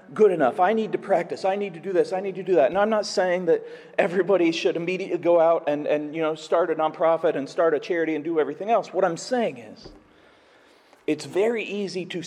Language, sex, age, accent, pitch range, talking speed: English, male, 40-59, American, 165-235 Hz, 240 wpm